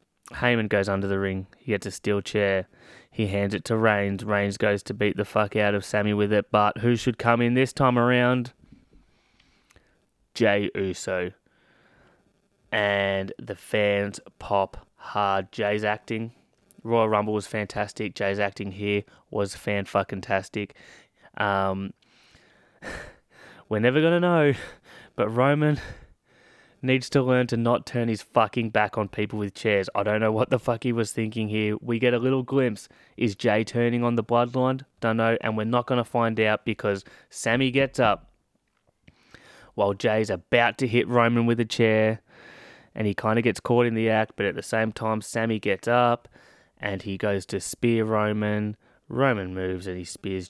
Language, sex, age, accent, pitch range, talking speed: English, male, 20-39, Australian, 100-120 Hz, 170 wpm